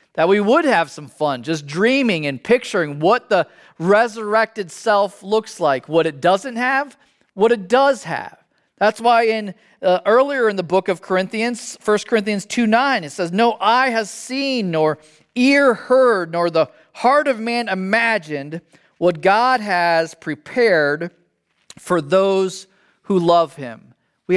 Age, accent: 40-59, American